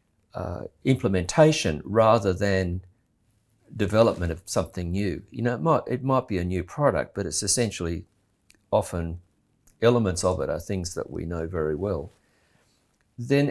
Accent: Australian